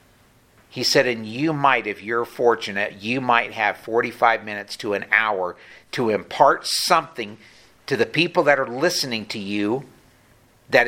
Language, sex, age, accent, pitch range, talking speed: English, male, 50-69, American, 110-135 Hz, 155 wpm